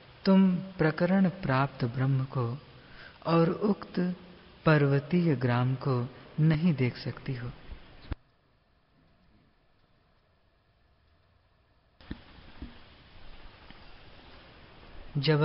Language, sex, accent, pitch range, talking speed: Hindi, female, native, 125-160 Hz, 60 wpm